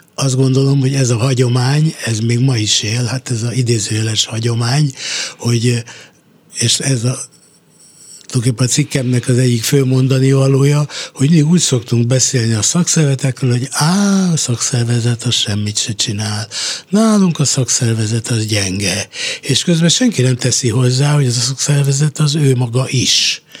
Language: Hungarian